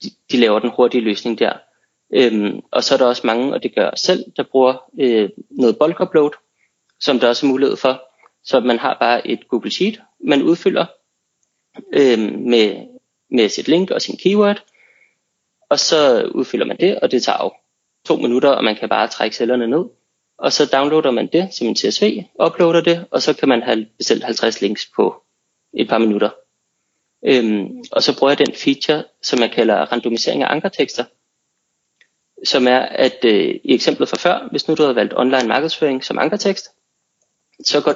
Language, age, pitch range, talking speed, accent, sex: Danish, 30-49, 120-185 Hz, 185 wpm, native, male